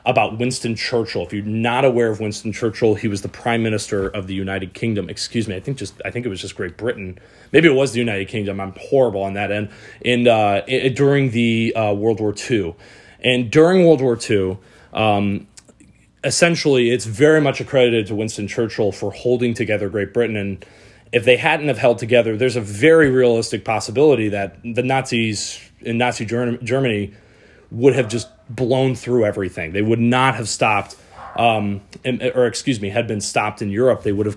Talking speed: 195 wpm